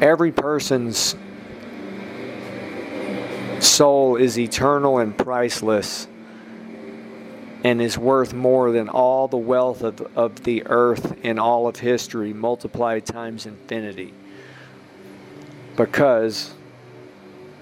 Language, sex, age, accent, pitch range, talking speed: English, male, 50-69, American, 110-130 Hz, 90 wpm